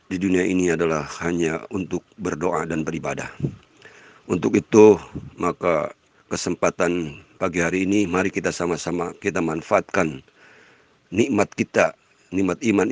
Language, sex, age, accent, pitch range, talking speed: Indonesian, male, 50-69, native, 85-95 Hz, 115 wpm